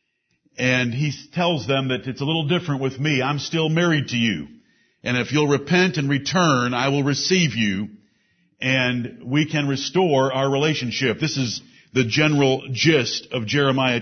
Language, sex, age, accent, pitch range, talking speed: English, male, 50-69, American, 125-160 Hz, 165 wpm